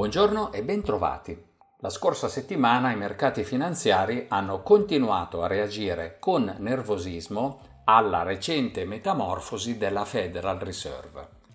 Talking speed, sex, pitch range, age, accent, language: 110 wpm, male, 100-140 Hz, 50-69, native, Italian